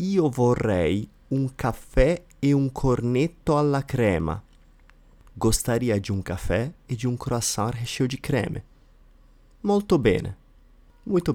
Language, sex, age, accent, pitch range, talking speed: Portuguese, male, 30-49, Italian, 90-135 Hz, 120 wpm